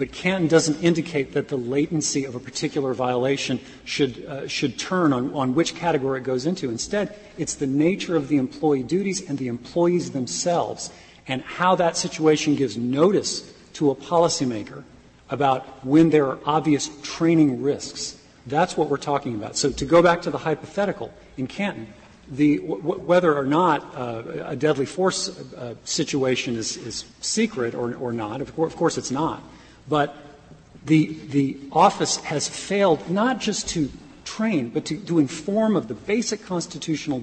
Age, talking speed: 40-59, 170 wpm